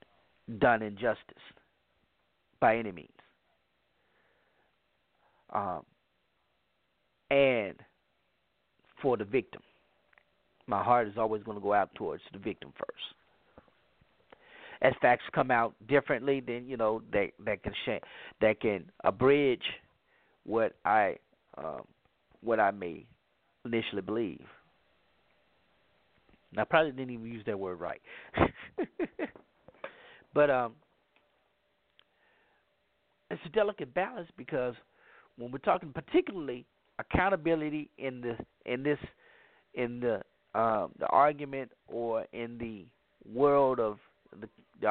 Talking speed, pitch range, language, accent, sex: 110 wpm, 90-135 Hz, English, American, male